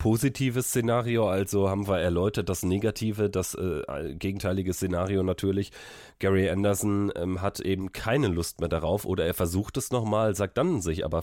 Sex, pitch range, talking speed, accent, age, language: male, 90-105 Hz, 165 wpm, German, 30-49, German